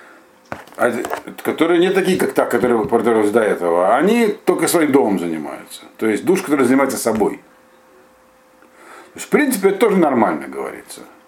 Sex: male